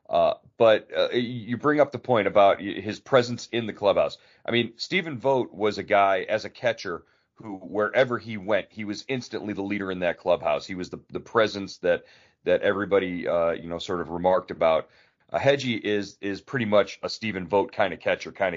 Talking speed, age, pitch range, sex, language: 205 wpm, 40-59, 95-120 Hz, male, English